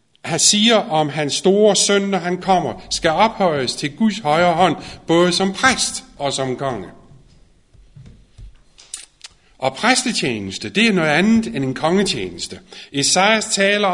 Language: Danish